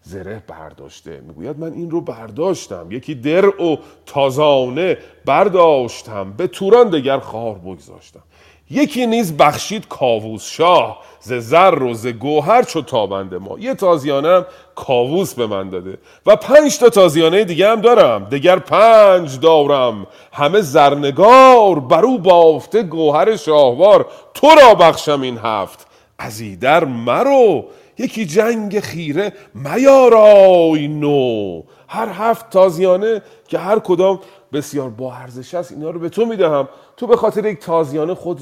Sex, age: male, 40-59